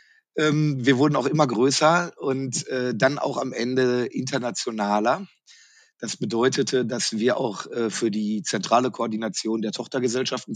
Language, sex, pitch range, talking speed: German, male, 110-145 Hz, 125 wpm